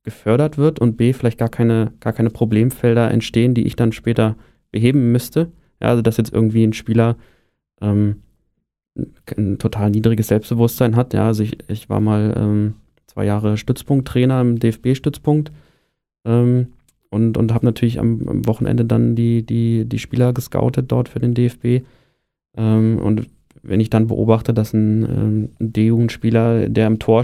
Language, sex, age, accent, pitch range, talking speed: German, male, 20-39, German, 110-125 Hz, 165 wpm